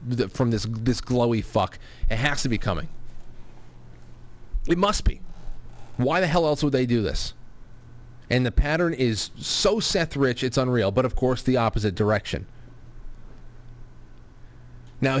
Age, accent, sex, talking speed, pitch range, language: 30-49, American, male, 145 wpm, 115-145 Hz, English